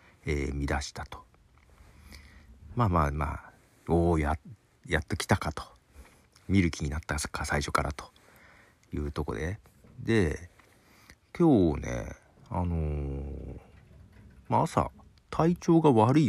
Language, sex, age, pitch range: Japanese, male, 50-69, 75-100 Hz